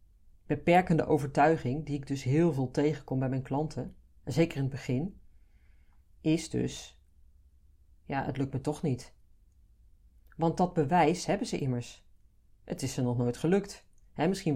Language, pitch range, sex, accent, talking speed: Dutch, 100-160 Hz, female, Dutch, 150 wpm